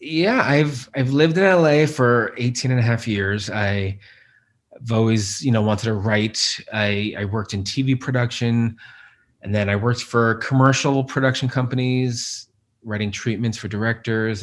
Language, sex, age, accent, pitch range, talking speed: English, male, 30-49, American, 100-120 Hz, 155 wpm